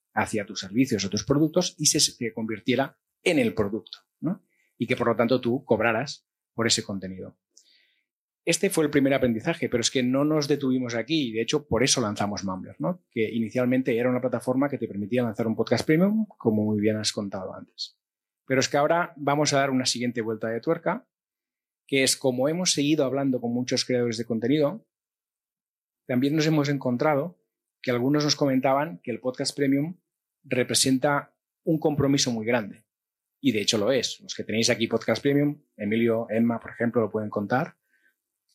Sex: male